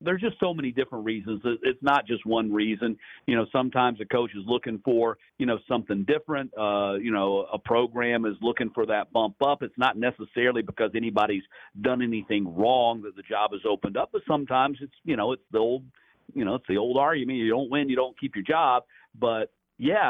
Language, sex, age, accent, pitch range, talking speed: English, male, 50-69, American, 105-125 Hz, 215 wpm